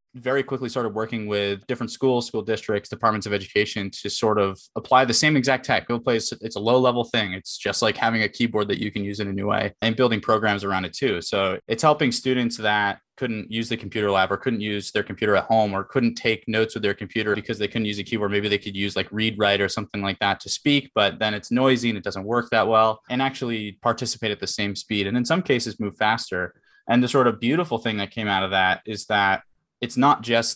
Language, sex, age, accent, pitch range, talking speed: English, male, 20-39, American, 100-120 Hz, 255 wpm